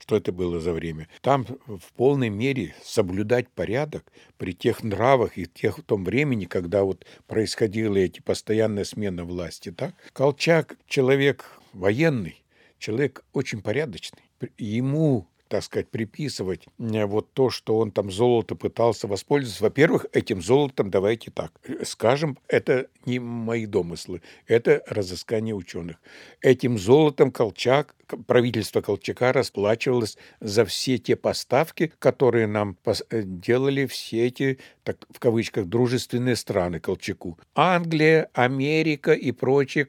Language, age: Russian, 60-79